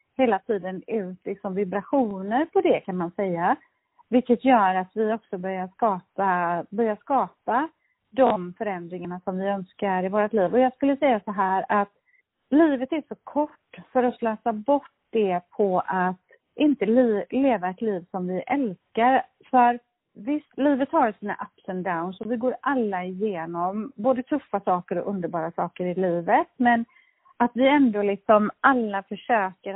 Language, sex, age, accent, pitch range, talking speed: Swedish, female, 40-59, native, 190-270 Hz, 165 wpm